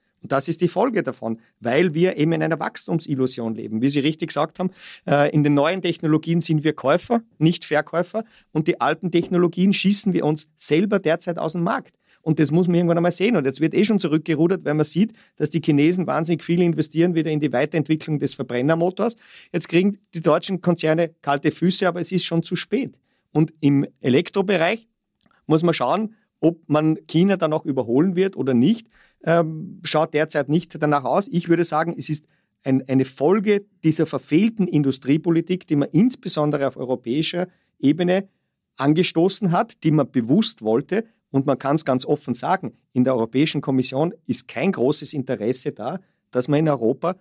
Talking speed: 185 wpm